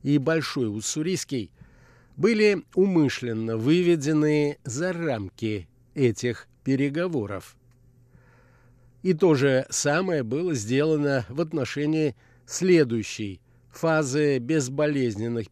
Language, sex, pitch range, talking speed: Russian, male, 120-155 Hz, 80 wpm